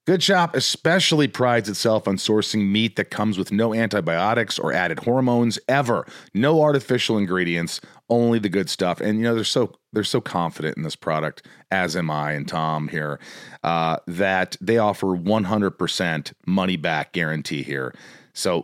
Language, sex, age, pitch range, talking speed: English, male, 40-59, 90-120 Hz, 165 wpm